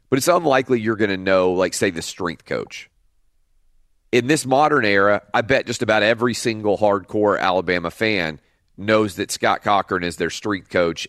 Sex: male